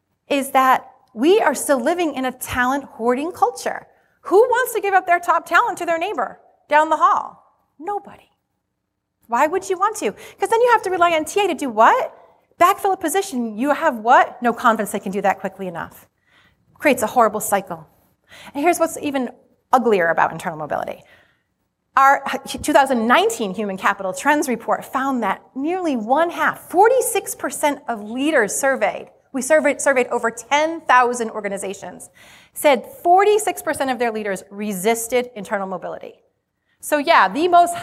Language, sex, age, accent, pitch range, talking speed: English, female, 30-49, American, 215-325 Hz, 160 wpm